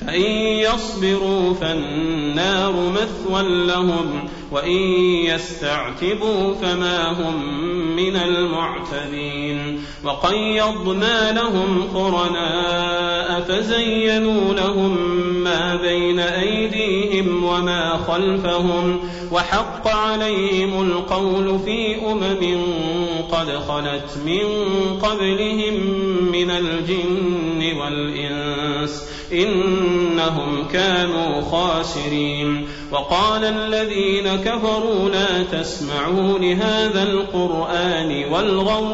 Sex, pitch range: male, 160-195 Hz